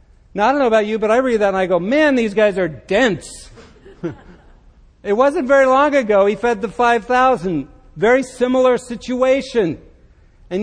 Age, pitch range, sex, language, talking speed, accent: 60-79, 155-220 Hz, male, English, 175 wpm, American